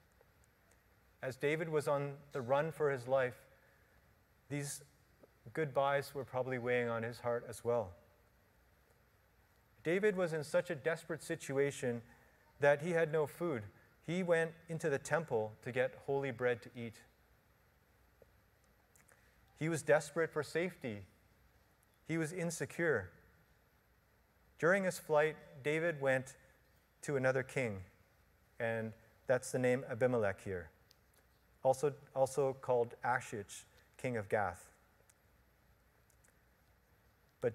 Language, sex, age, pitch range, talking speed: English, male, 30-49, 120-150 Hz, 115 wpm